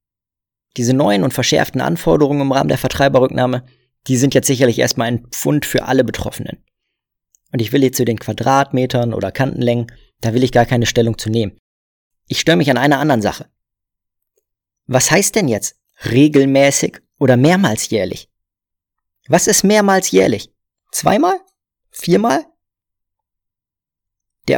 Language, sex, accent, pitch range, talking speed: German, male, German, 120-160 Hz, 140 wpm